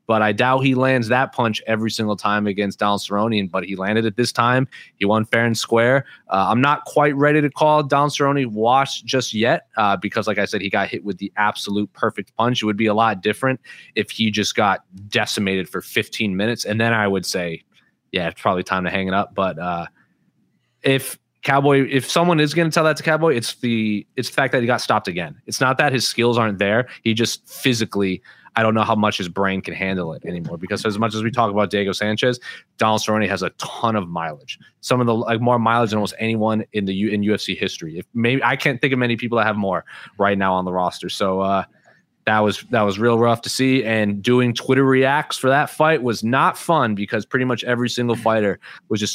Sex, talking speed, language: male, 240 wpm, English